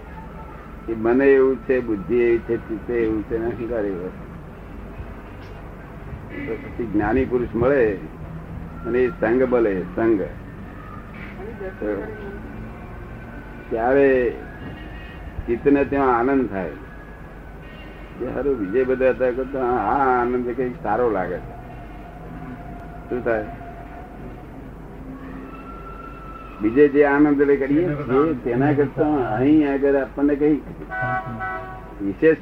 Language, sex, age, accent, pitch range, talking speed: Gujarati, male, 60-79, native, 100-140 Hz, 30 wpm